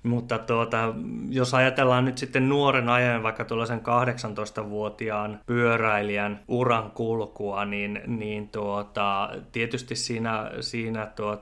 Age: 20-39